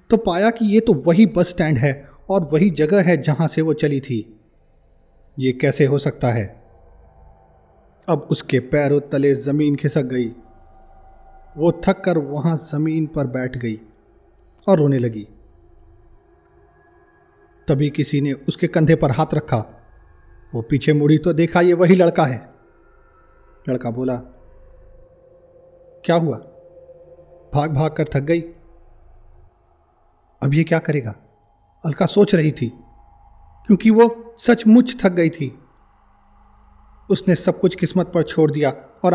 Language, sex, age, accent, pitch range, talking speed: Hindi, male, 30-49, native, 120-175 Hz, 135 wpm